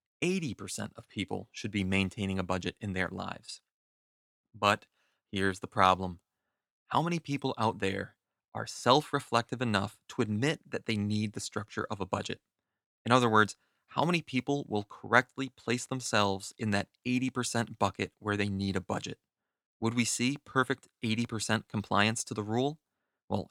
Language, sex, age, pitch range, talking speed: English, male, 30-49, 100-120 Hz, 155 wpm